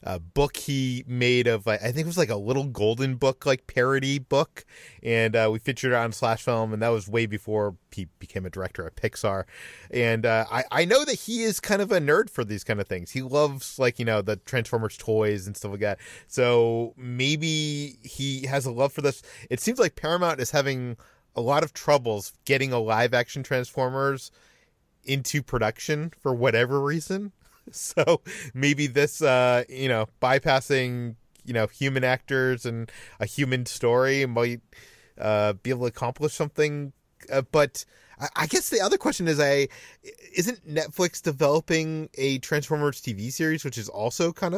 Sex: male